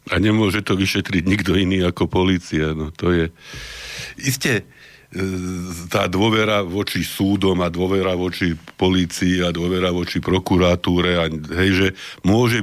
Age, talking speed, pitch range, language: 50-69, 120 wpm, 85-100 Hz, Slovak